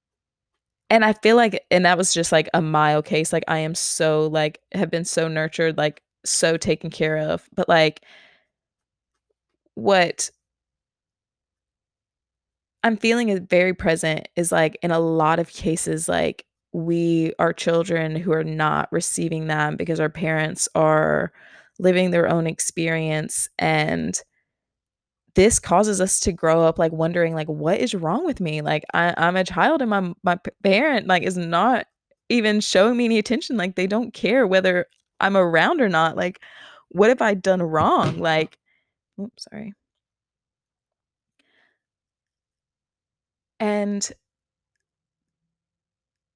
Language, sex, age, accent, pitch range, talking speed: English, female, 20-39, American, 160-205 Hz, 140 wpm